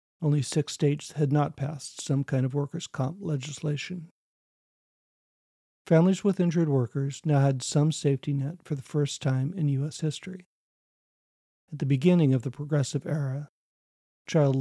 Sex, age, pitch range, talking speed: male, 50-69, 135-155 Hz, 150 wpm